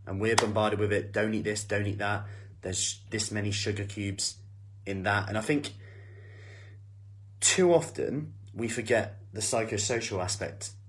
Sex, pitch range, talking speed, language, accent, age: male, 100-110 Hz, 155 wpm, English, British, 30-49